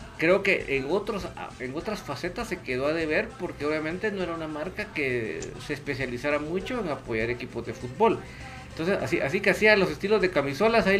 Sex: male